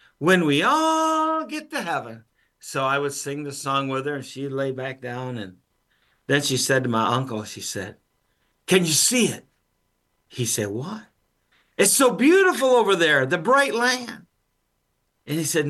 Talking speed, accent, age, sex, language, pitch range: 175 wpm, American, 50-69, male, English, 115-155 Hz